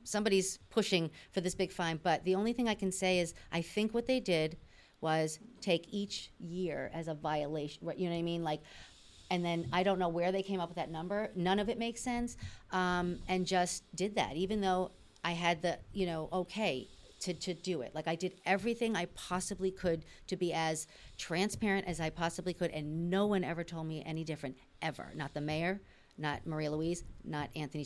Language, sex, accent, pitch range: English, female, American, 165-210 Hz